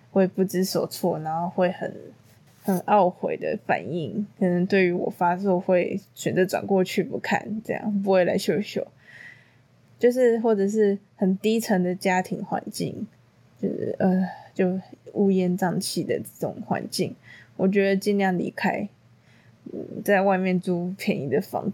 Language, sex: Chinese, female